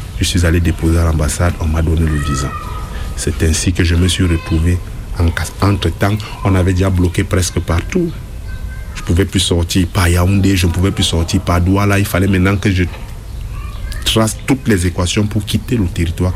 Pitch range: 85-100 Hz